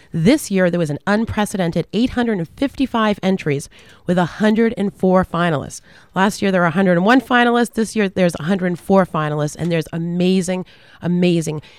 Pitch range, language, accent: 160-200 Hz, English, American